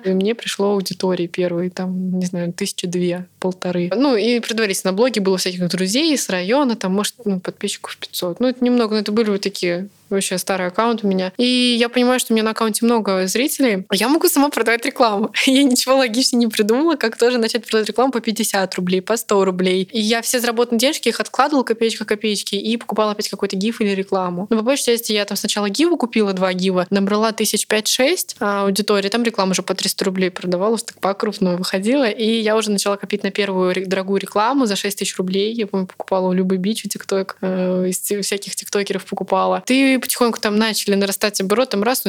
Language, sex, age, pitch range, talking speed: Russian, female, 20-39, 195-235 Hz, 210 wpm